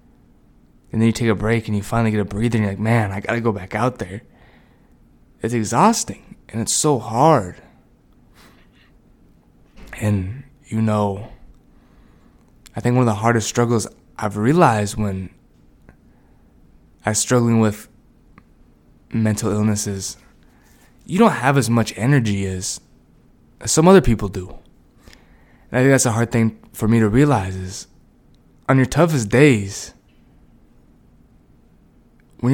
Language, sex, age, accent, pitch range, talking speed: English, male, 20-39, American, 105-130 Hz, 140 wpm